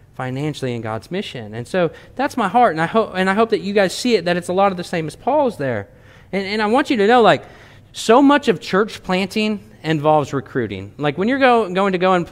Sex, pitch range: male, 160-215 Hz